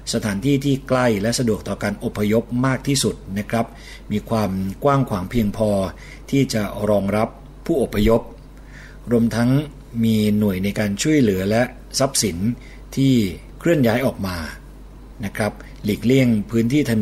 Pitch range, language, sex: 100-120 Hz, Thai, male